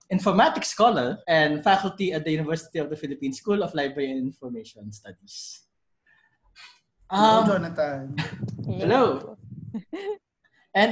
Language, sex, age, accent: English, male, 20-39, Filipino